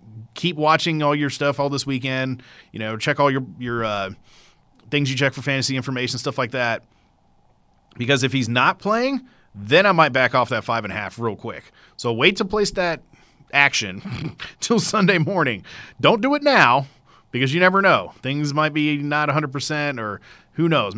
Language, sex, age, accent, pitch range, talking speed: English, male, 30-49, American, 115-150 Hz, 195 wpm